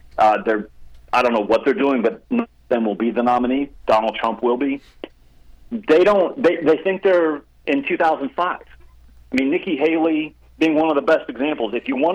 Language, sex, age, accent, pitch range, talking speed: English, male, 40-59, American, 110-155 Hz, 200 wpm